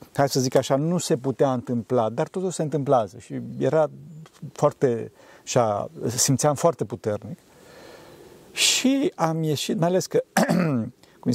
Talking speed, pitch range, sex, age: 135 wpm, 125-170 Hz, male, 50-69